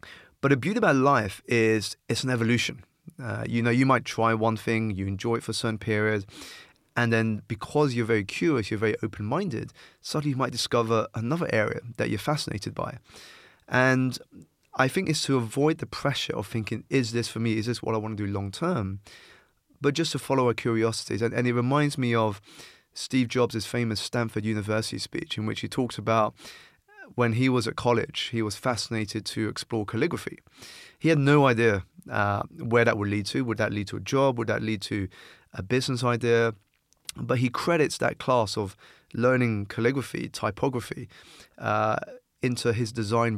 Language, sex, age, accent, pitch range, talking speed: English, male, 20-39, British, 110-125 Hz, 190 wpm